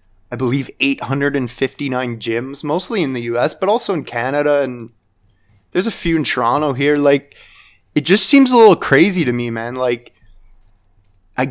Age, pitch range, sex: 20-39, 120-150 Hz, male